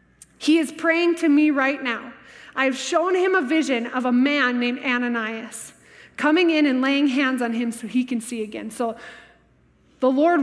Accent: American